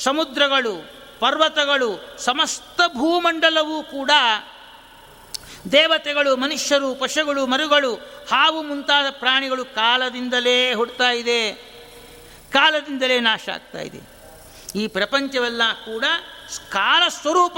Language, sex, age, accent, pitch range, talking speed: Kannada, male, 60-79, native, 240-285 Hz, 80 wpm